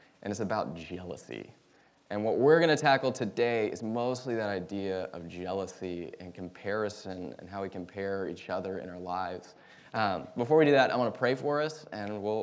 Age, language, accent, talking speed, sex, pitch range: 20-39, English, American, 200 wpm, male, 90-110 Hz